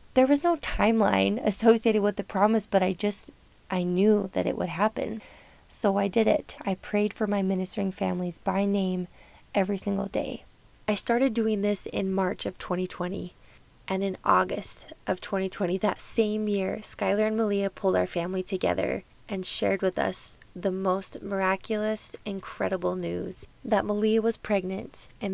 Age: 20-39